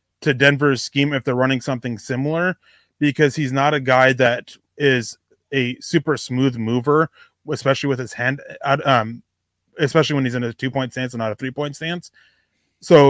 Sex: male